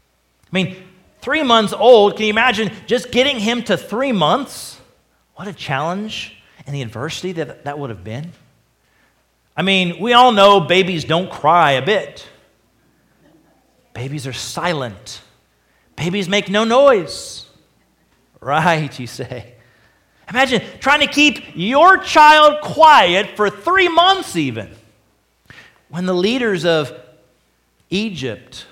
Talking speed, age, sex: 125 wpm, 40-59, male